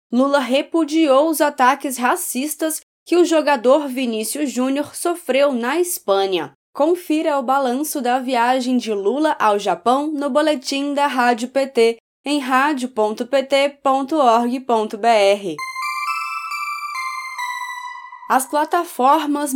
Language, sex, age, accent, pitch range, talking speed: Portuguese, female, 10-29, Brazilian, 230-295 Hz, 95 wpm